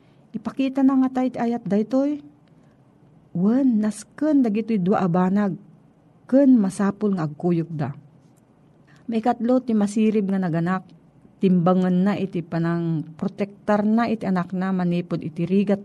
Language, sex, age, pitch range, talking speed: Filipino, female, 40-59, 160-215 Hz, 125 wpm